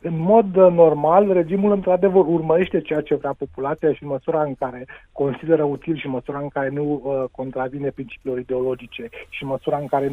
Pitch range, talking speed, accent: 140-175 Hz, 170 wpm, native